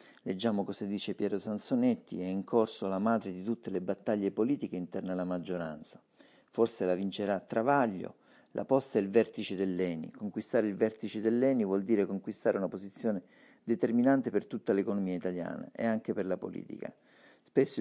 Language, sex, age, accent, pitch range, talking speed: Italian, male, 50-69, native, 95-115 Hz, 160 wpm